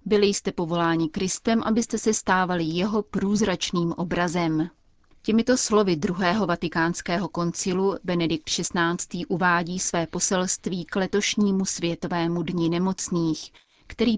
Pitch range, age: 170-195 Hz, 30-49